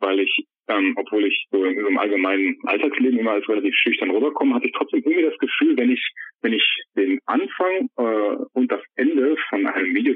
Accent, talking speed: German, 195 wpm